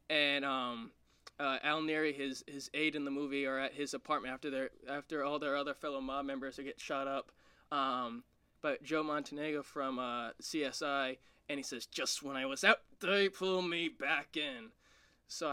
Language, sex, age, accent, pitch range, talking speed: English, male, 20-39, American, 135-165 Hz, 190 wpm